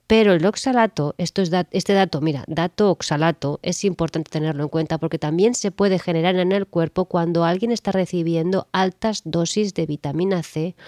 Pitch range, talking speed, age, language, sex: 150-185 Hz, 165 wpm, 20-39, Spanish, female